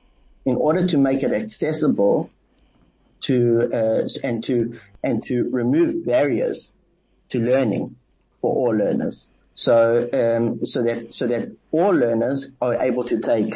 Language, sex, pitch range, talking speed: English, male, 110-120 Hz, 135 wpm